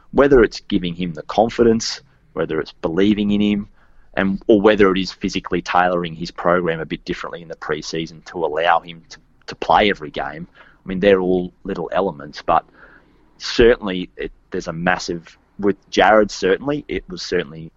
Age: 30-49